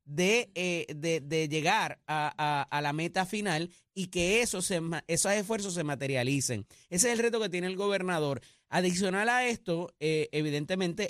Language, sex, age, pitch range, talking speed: Spanish, male, 30-49, 150-195 Hz, 175 wpm